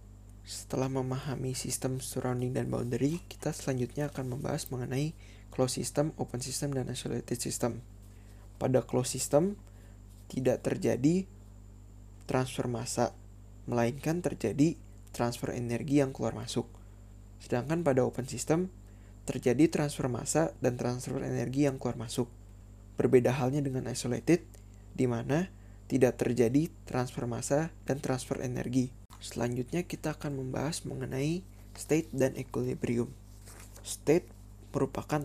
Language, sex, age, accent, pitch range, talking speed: Indonesian, male, 20-39, native, 100-135 Hz, 115 wpm